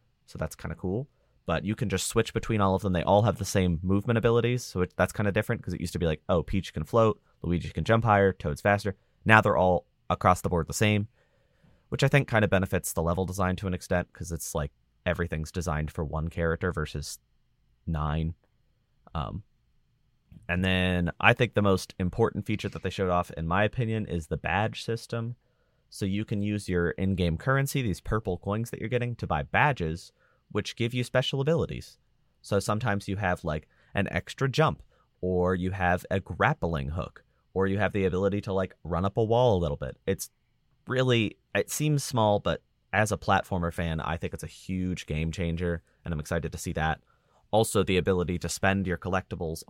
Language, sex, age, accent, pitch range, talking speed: English, male, 30-49, American, 85-105 Hz, 205 wpm